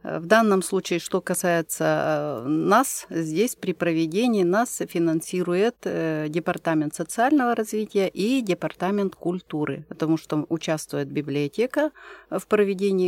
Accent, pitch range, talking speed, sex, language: native, 155-190 Hz, 105 wpm, female, Russian